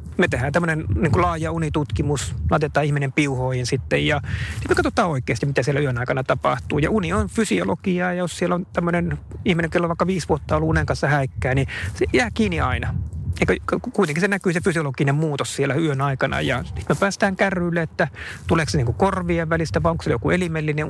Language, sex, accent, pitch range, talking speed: Finnish, male, native, 130-160 Hz, 200 wpm